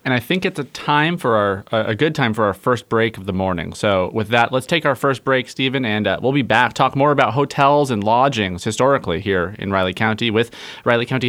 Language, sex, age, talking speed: English, male, 30-49, 245 wpm